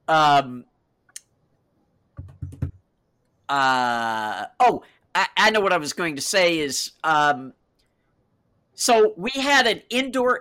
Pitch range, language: 170-225 Hz, English